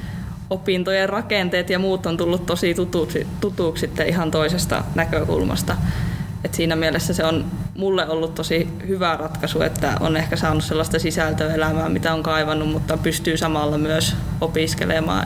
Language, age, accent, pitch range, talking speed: Finnish, 20-39, native, 160-180 Hz, 140 wpm